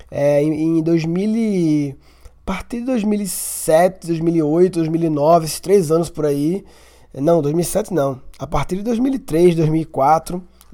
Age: 20-39